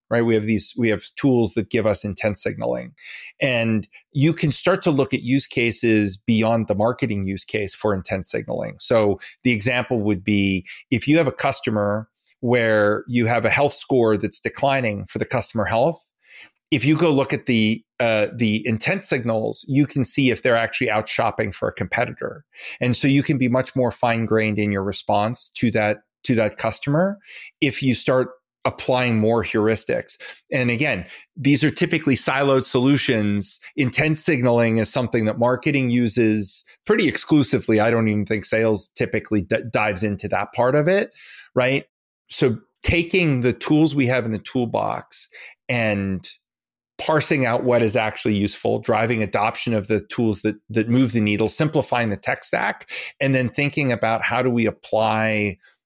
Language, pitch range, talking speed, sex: English, 110-135 Hz, 175 wpm, male